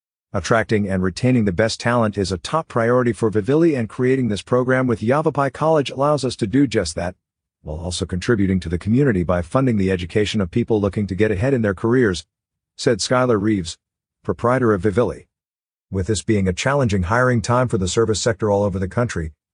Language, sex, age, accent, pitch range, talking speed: English, male, 50-69, American, 95-125 Hz, 200 wpm